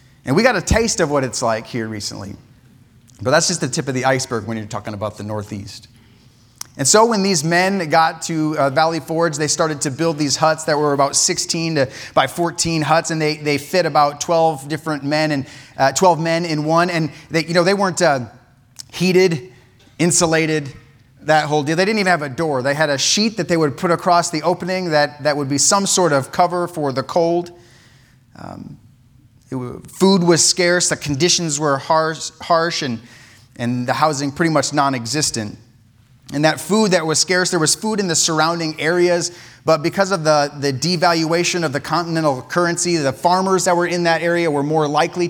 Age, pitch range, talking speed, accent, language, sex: 30-49, 130-170 Hz, 205 wpm, American, English, male